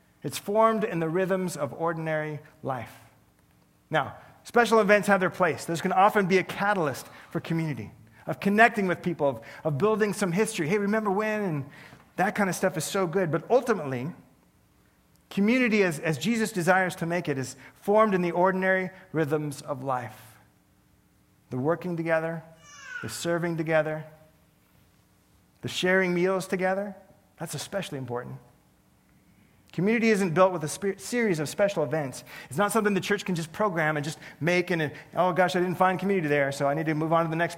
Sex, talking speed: male, 175 wpm